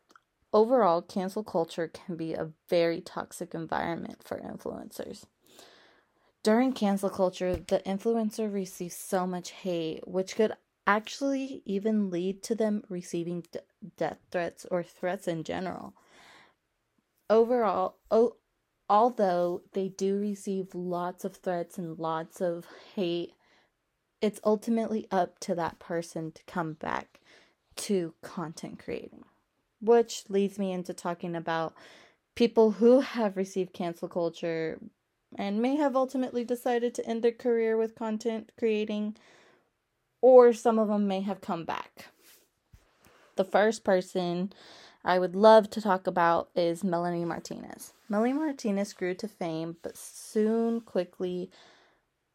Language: English